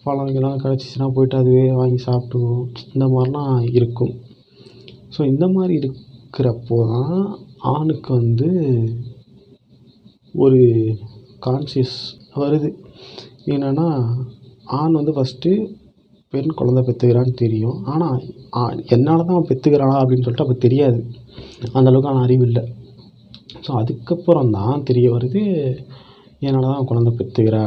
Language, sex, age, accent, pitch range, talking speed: Tamil, male, 30-49, native, 115-135 Hz, 100 wpm